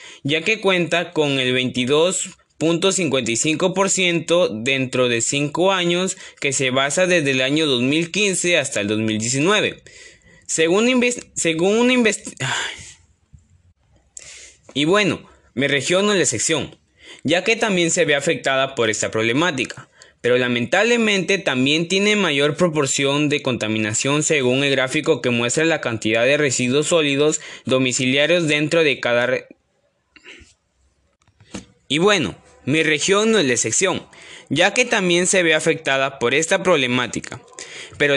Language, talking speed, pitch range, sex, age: Spanish, 130 wpm, 130-185 Hz, male, 20-39